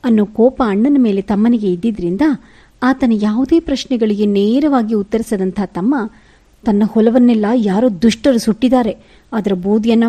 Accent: native